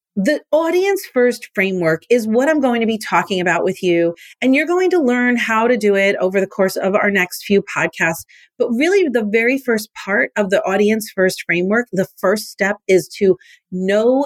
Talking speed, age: 195 wpm, 40-59